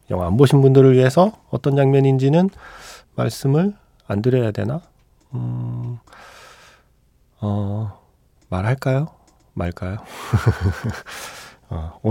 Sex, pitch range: male, 100-140 Hz